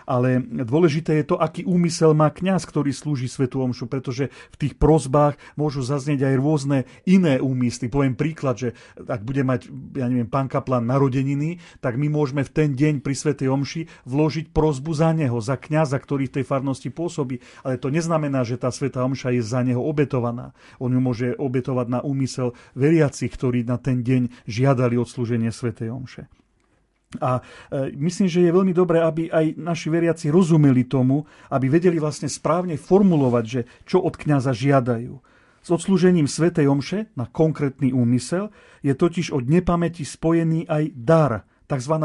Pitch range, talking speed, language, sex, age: 130-165 Hz, 165 wpm, Slovak, male, 40-59